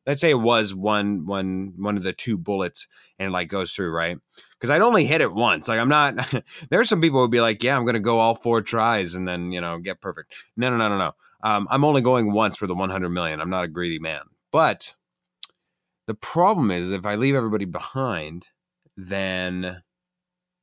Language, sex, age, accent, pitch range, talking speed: English, male, 30-49, American, 100-160 Hz, 220 wpm